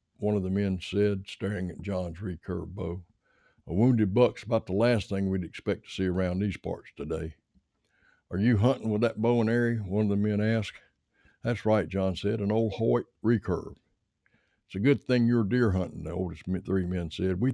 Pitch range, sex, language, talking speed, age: 90-110 Hz, male, English, 200 wpm, 60-79